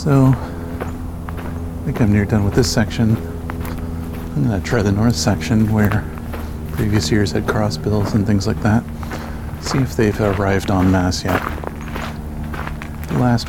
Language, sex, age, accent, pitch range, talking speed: English, male, 40-59, American, 85-110 Hz, 140 wpm